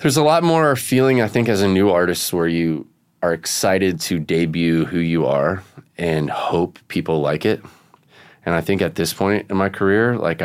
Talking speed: 200 wpm